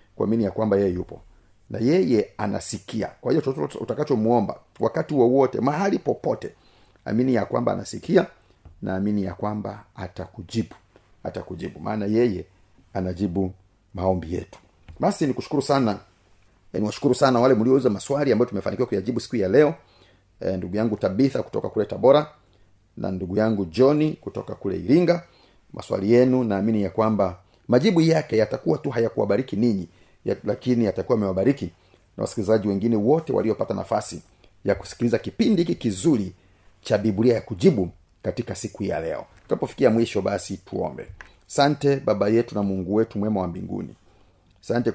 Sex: male